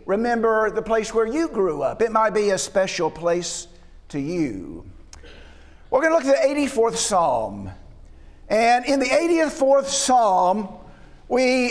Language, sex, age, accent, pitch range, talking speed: English, male, 50-69, American, 215-285 Hz, 150 wpm